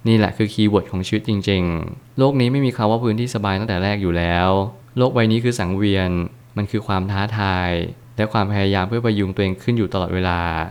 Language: Thai